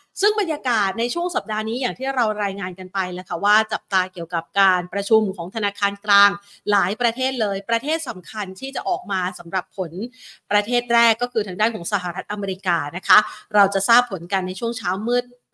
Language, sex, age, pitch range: Thai, female, 30-49, 195-245 Hz